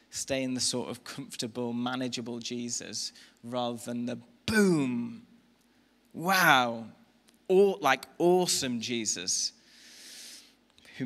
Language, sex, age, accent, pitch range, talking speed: English, male, 20-39, British, 120-180 Hz, 100 wpm